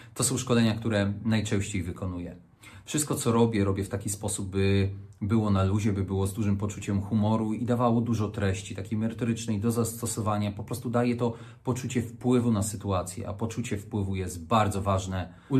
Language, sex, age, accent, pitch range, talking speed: Polish, male, 40-59, native, 100-125 Hz, 175 wpm